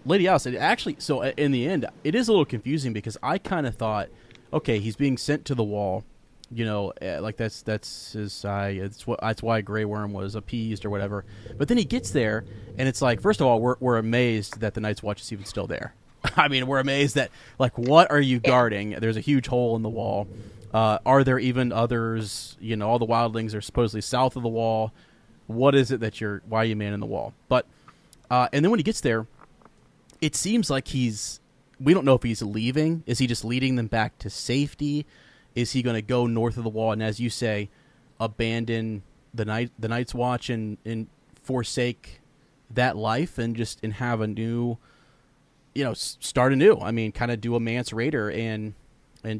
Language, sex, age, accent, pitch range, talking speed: English, male, 30-49, American, 110-130 Hz, 215 wpm